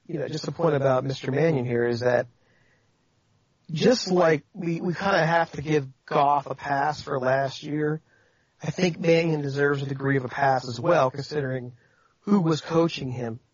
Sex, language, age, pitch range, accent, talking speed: male, English, 40-59, 130-170 Hz, American, 185 wpm